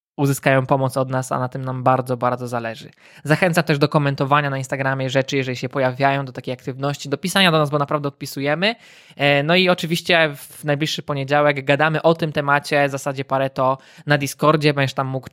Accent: native